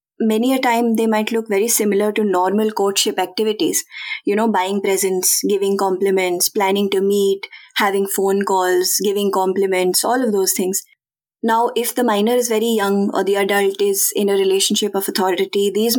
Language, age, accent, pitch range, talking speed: English, 20-39, Indian, 195-240 Hz, 175 wpm